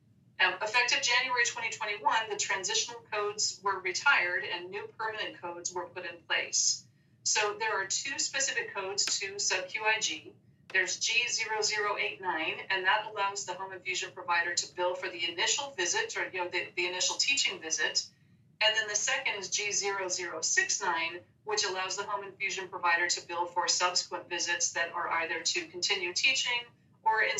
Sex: female